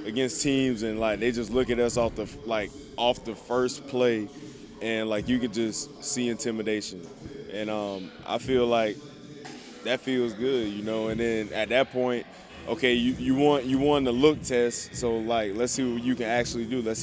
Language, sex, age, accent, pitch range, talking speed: English, male, 20-39, American, 115-130 Hz, 200 wpm